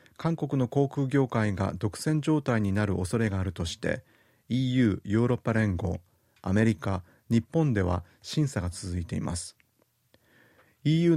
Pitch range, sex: 95-130 Hz, male